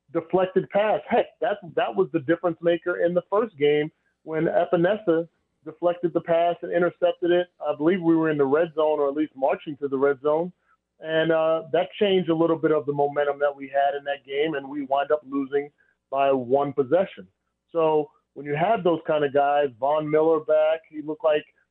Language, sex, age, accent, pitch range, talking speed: English, male, 30-49, American, 145-165 Hz, 205 wpm